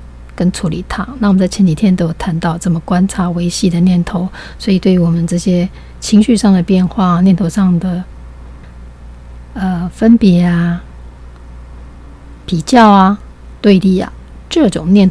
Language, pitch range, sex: Chinese, 165-190 Hz, female